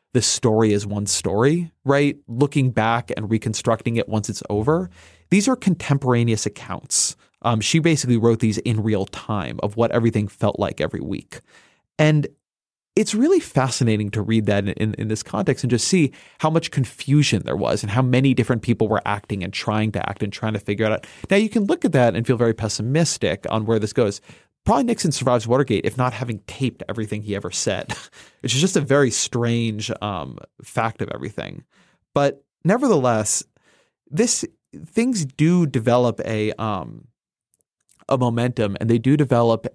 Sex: male